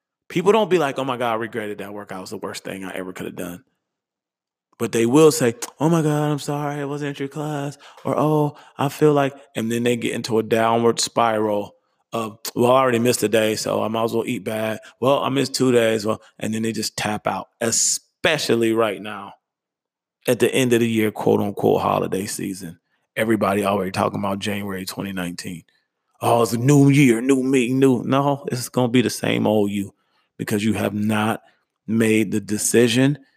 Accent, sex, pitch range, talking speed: American, male, 105-130 Hz, 210 wpm